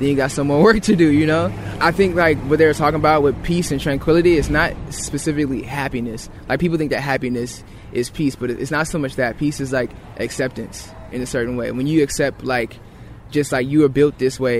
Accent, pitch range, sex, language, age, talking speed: American, 125-150 Hz, male, English, 20-39, 235 wpm